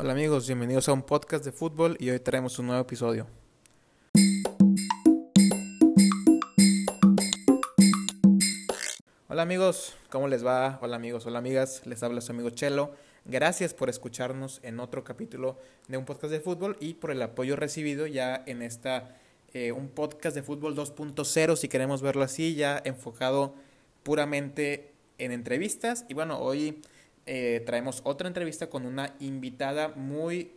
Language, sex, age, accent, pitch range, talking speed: Spanish, male, 20-39, Mexican, 125-155 Hz, 145 wpm